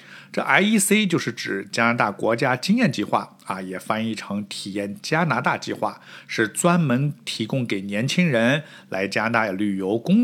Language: Chinese